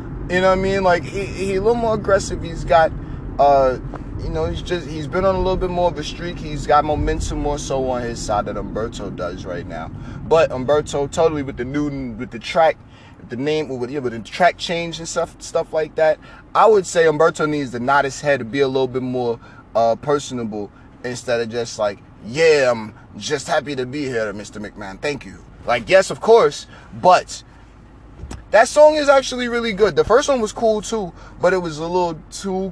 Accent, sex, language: American, male, English